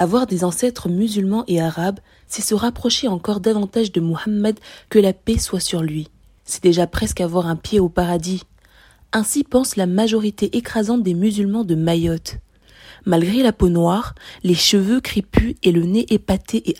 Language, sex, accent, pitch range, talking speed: French, female, French, 180-230 Hz, 170 wpm